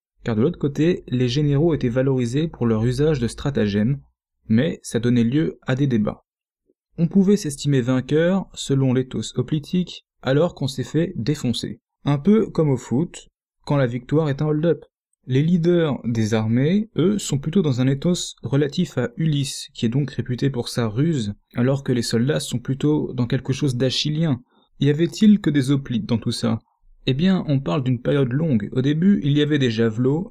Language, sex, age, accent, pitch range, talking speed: French, male, 20-39, French, 125-160 Hz, 190 wpm